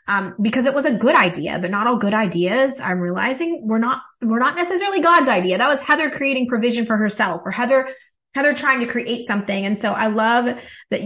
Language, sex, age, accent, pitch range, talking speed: English, female, 20-39, American, 190-245 Hz, 215 wpm